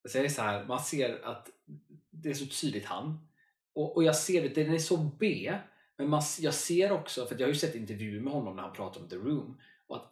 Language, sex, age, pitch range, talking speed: Swedish, male, 20-39, 105-155 Hz, 255 wpm